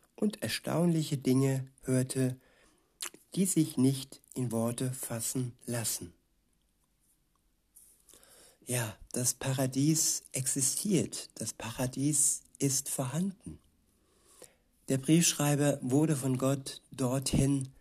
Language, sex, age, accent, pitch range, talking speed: German, male, 60-79, German, 120-140 Hz, 85 wpm